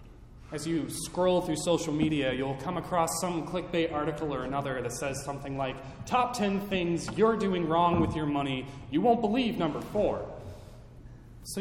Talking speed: 170 wpm